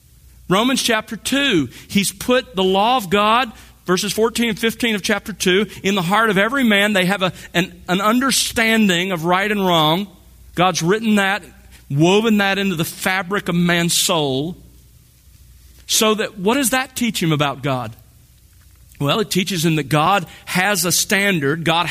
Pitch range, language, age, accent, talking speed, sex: 155-215 Hz, English, 40-59, American, 170 wpm, male